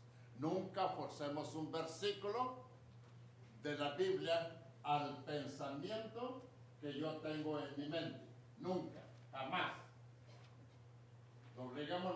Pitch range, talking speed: 120-155 Hz, 90 wpm